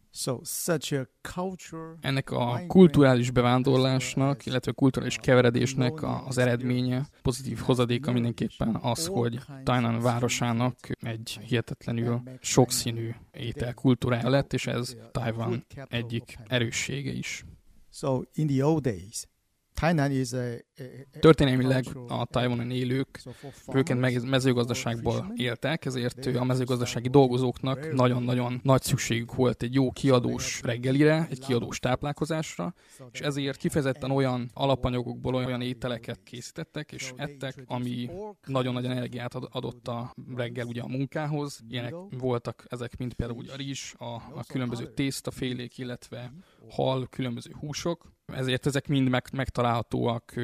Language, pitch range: Hungarian, 120-135 Hz